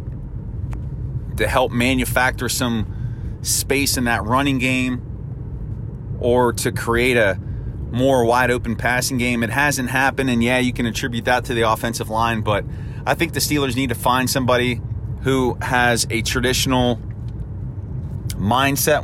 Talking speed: 140 wpm